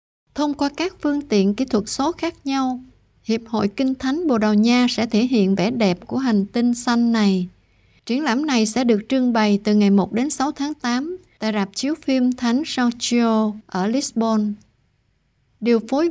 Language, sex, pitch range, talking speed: Vietnamese, female, 205-260 Hz, 195 wpm